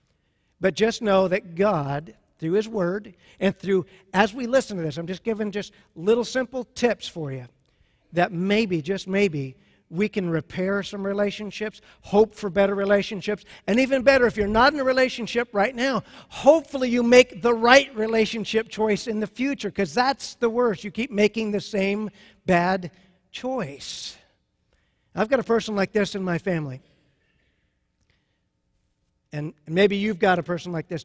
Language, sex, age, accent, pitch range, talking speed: English, male, 50-69, American, 180-210 Hz, 165 wpm